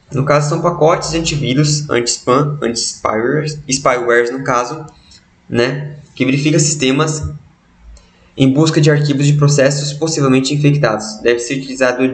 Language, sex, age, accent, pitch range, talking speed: Portuguese, male, 20-39, Brazilian, 120-150 Hz, 125 wpm